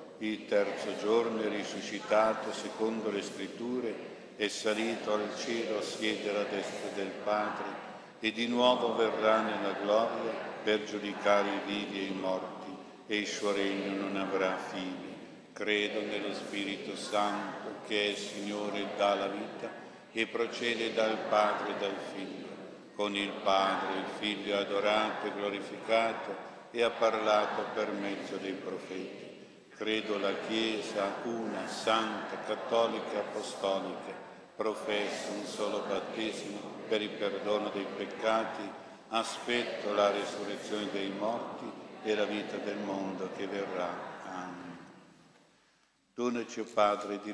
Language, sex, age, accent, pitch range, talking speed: Italian, male, 50-69, native, 100-110 Hz, 130 wpm